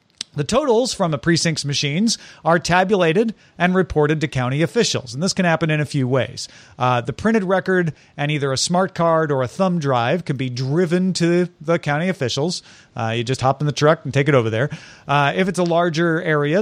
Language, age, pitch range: English, 40-59, 130-175 Hz